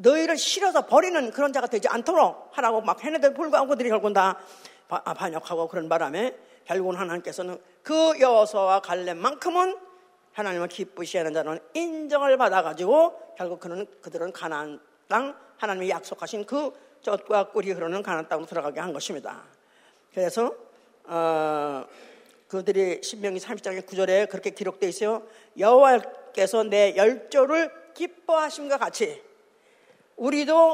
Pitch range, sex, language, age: 190-295 Hz, female, Korean, 40-59